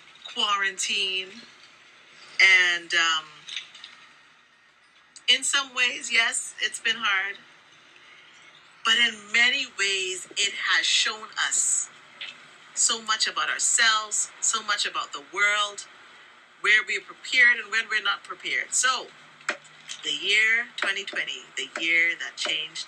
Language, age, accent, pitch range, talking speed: English, 40-59, American, 180-240 Hz, 115 wpm